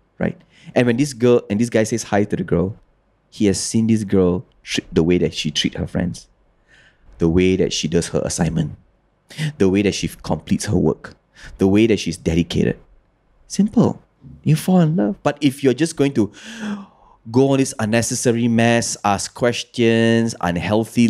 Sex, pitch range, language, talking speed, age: male, 95-140 Hz, English, 180 wpm, 20-39